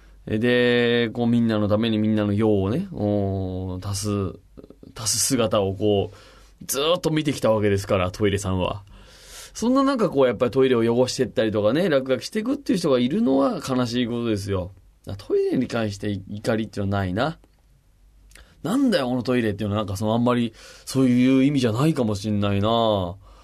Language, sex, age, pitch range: Japanese, male, 20-39, 100-130 Hz